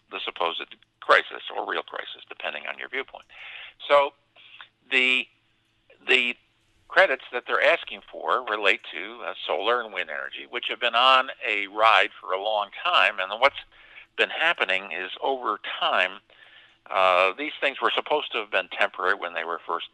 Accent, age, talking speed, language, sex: American, 50-69, 165 wpm, English, male